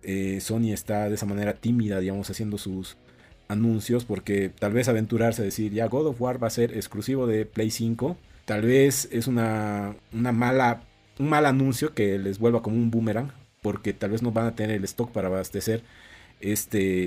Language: Spanish